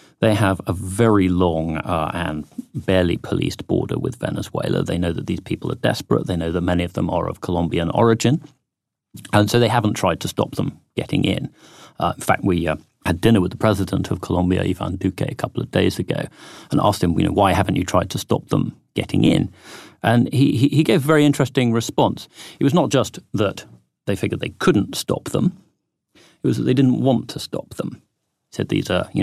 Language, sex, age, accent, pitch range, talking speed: English, male, 40-59, British, 90-115 Hz, 215 wpm